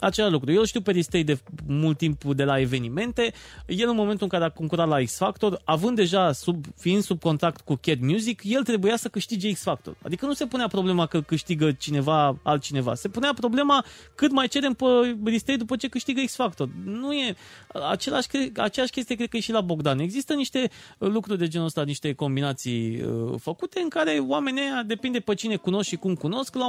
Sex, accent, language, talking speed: male, native, Romanian, 195 wpm